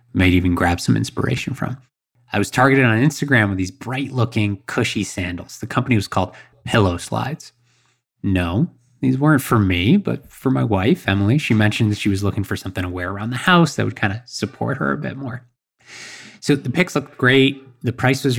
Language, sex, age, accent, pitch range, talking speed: English, male, 20-39, American, 100-130 Hz, 200 wpm